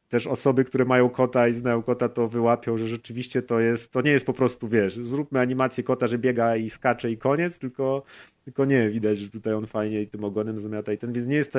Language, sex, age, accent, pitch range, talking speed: Polish, male, 30-49, native, 115-135 Hz, 245 wpm